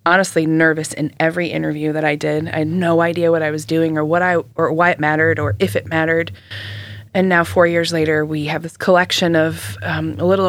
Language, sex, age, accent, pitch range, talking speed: English, female, 20-39, American, 110-170 Hz, 230 wpm